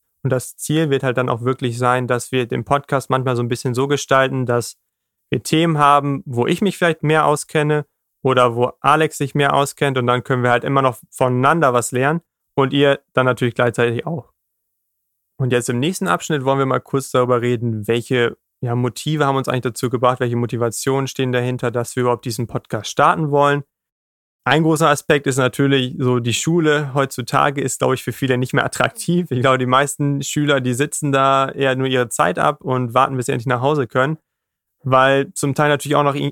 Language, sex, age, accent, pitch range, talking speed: German, male, 30-49, German, 125-145 Hz, 205 wpm